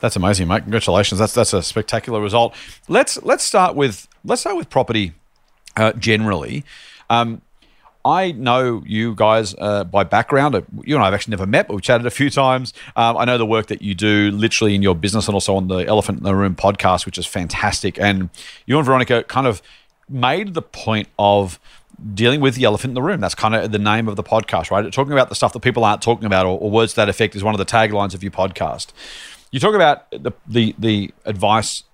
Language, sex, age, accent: English, male, 40-59, Australian